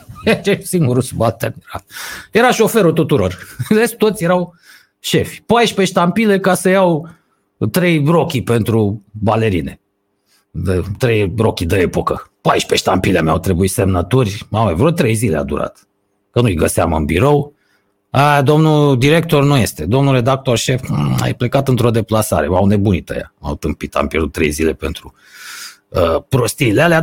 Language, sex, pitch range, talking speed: Romanian, male, 100-140 Hz, 140 wpm